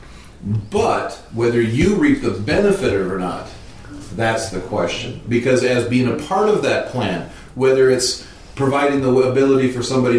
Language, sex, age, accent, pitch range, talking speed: English, male, 40-59, American, 110-135 Hz, 165 wpm